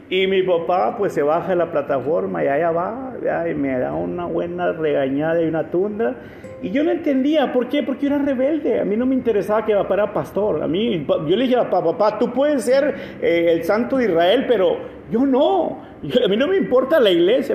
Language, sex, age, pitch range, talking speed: Spanish, male, 50-69, 150-245 Hz, 220 wpm